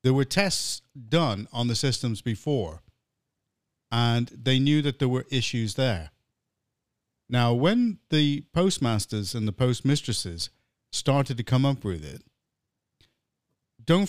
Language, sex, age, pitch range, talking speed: English, male, 50-69, 115-175 Hz, 130 wpm